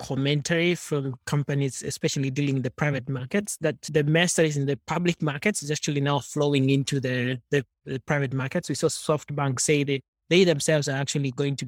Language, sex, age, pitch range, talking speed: English, male, 20-39, 140-165 Hz, 195 wpm